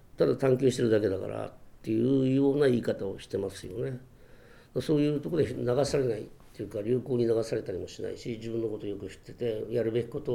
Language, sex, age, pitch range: Japanese, male, 60-79, 105-130 Hz